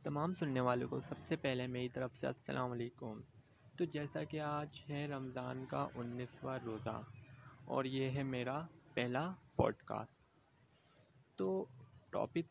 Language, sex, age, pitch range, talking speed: Urdu, male, 20-39, 125-155 Hz, 140 wpm